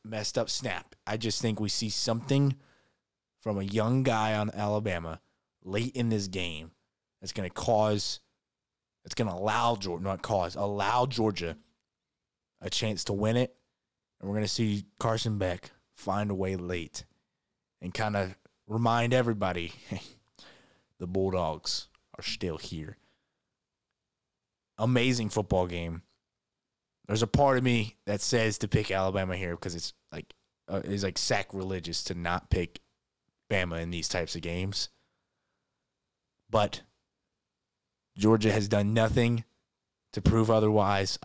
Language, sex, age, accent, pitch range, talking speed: English, male, 20-39, American, 90-115 Hz, 140 wpm